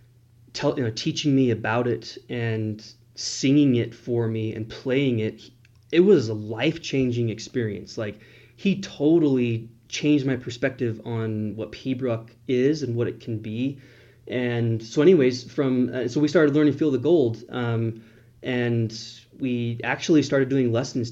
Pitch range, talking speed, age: 115-130 Hz, 155 wpm, 20-39